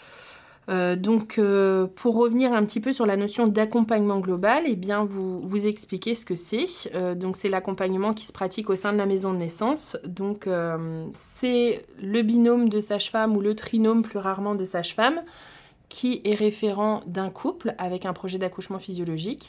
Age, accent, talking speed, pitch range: 20-39, French, 180 wpm, 185-225 Hz